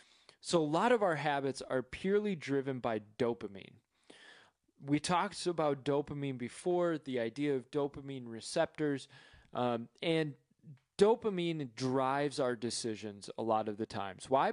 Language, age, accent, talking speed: English, 20-39, American, 135 wpm